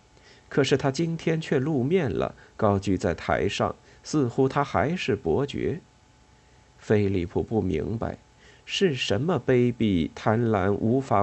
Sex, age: male, 50-69